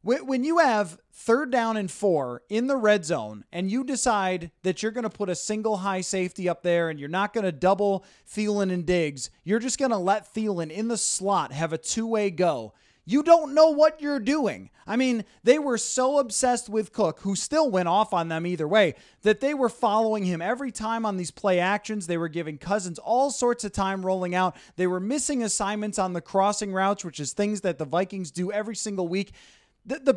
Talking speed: 215 wpm